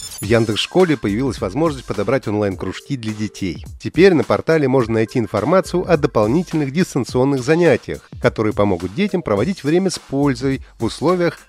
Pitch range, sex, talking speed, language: 110-165 Hz, male, 140 wpm, Russian